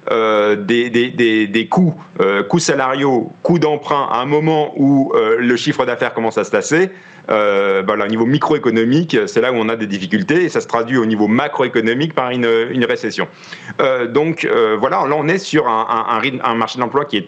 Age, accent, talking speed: 40-59, French, 220 wpm